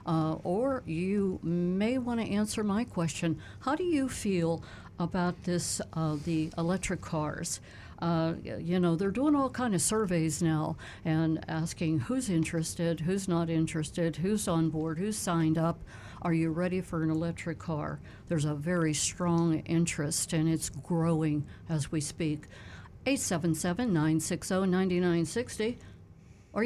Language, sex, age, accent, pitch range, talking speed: English, female, 60-79, American, 160-190 Hz, 140 wpm